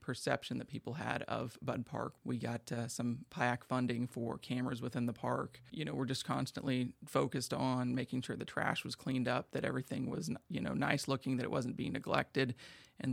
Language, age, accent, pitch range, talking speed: English, 30-49, American, 125-135 Hz, 205 wpm